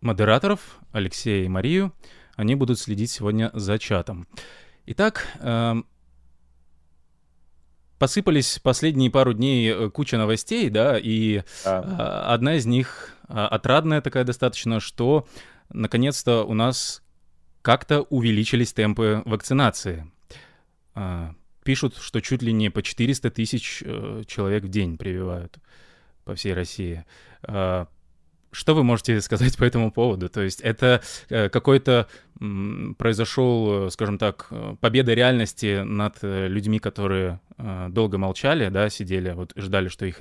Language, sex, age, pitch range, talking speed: Russian, male, 20-39, 95-120 Hz, 110 wpm